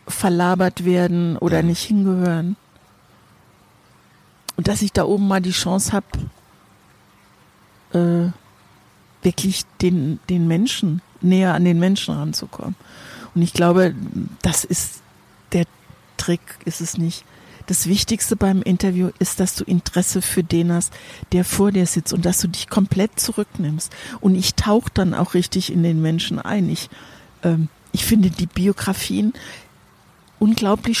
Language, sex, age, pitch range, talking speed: German, female, 60-79, 165-195 Hz, 140 wpm